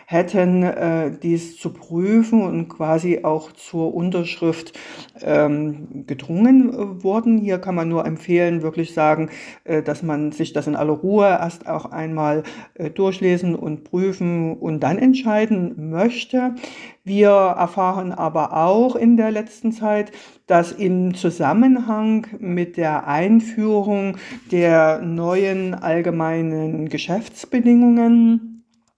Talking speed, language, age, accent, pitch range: 120 wpm, German, 50-69, German, 165-205 Hz